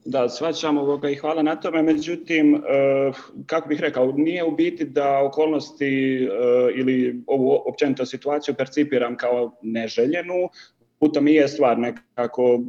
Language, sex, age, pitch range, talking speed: Croatian, male, 30-49, 125-155 Hz, 140 wpm